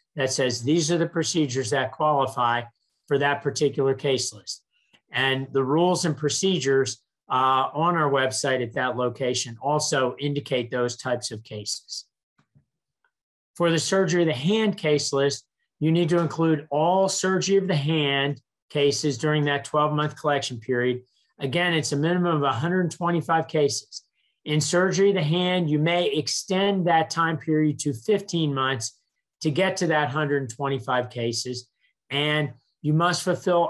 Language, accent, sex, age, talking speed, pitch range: English, American, male, 40-59, 155 wpm, 135-170 Hz